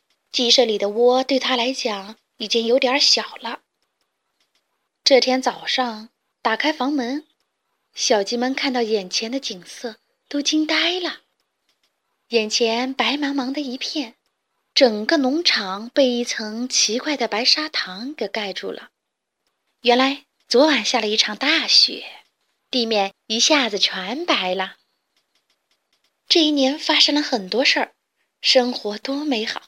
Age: 20-39